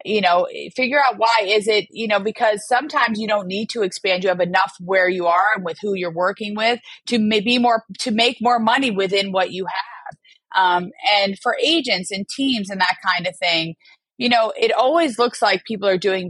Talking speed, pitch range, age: 215 wpm, 180-230 Hz, 30-49